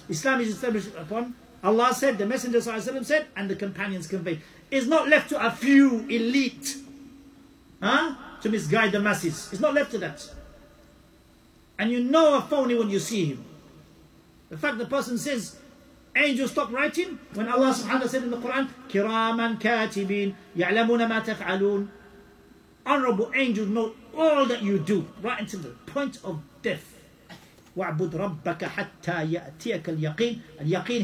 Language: English